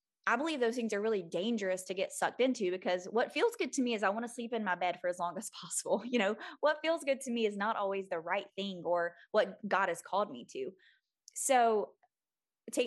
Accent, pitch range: American, 195-245 Hz